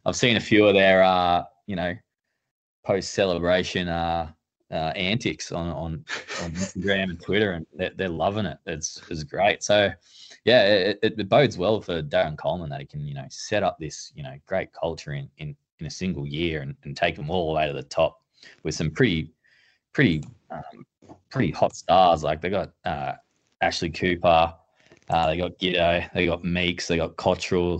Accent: Australian